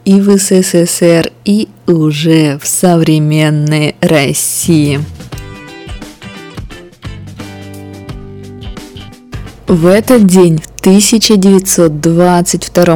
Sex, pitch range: female, 145-185 Hz